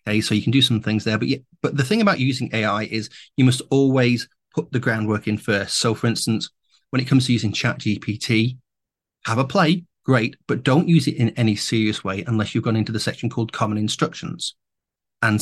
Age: 30-49